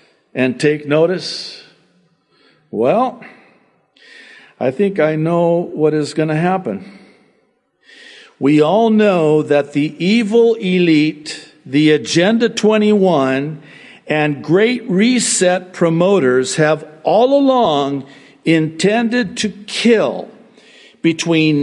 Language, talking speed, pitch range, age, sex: English, 95 wpm, 135-195 Hz, 60-79, male